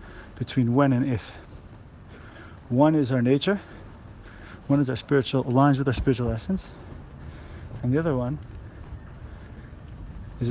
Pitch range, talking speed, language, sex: 100-150 Hz, 125 wpm, English, male